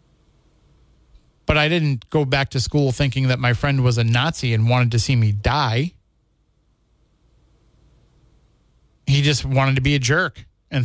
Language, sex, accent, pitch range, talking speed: English, male, American, 115-155 Hz, 155 wpm